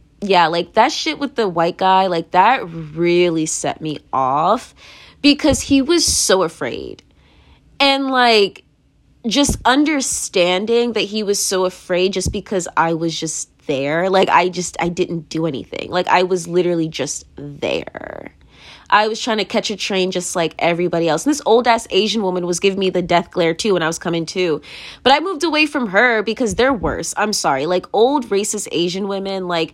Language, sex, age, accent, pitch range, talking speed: English, female, 20-39, American, 170-235 Hz, 185 wpm